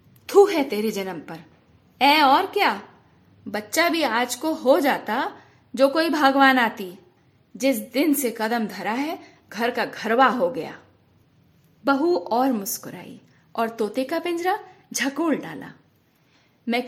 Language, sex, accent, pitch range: Hindi, female, native, 215-290 Hz